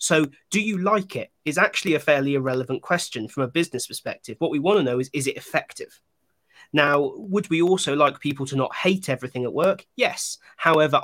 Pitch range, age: 135-160 Hz, 30-49